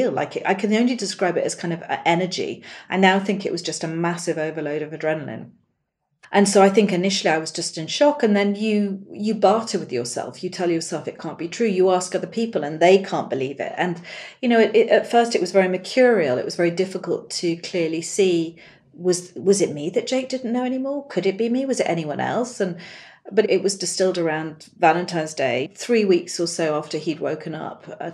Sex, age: female, 40-59